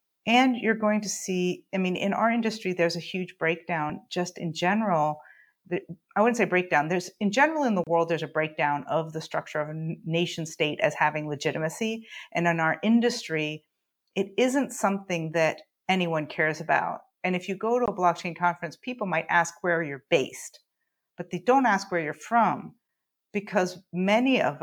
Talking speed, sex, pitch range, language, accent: 185 wpm, female, 155-195 Hz, English, American